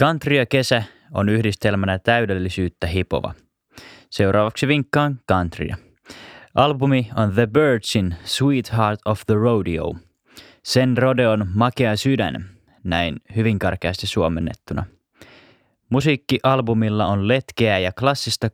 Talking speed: 100 wpm